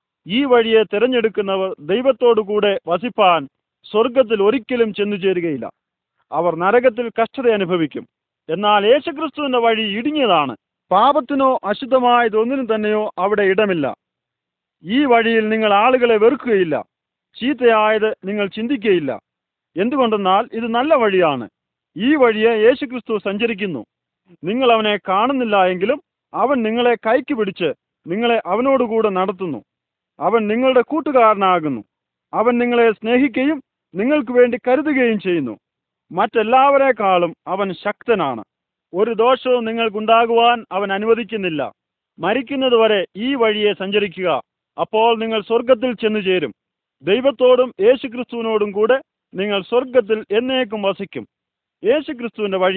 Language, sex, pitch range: Arabic, male, 205-250 Hz